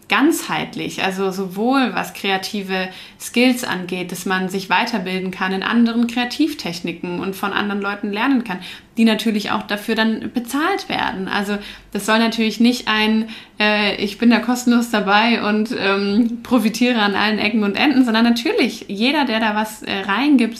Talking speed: 165 wpm